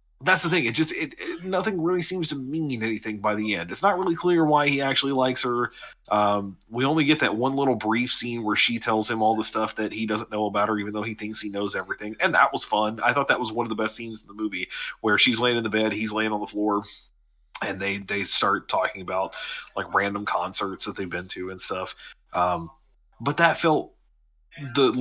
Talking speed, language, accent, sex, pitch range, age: 240 wpm, English, American, male, 105-130 Hz, 30-49